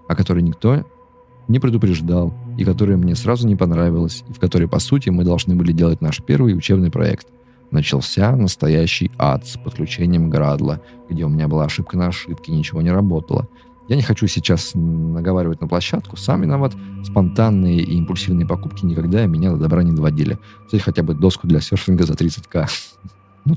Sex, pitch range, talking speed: male, 85-115 Hz, 180 wpm